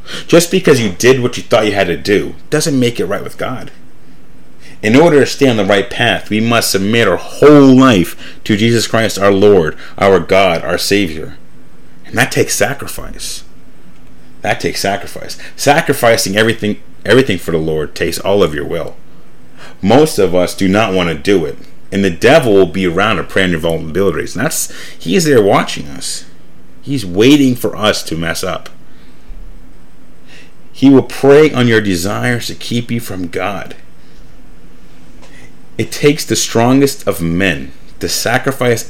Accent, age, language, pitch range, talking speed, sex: American, 30-49, English, 85-120 Hz, 170 wpm, male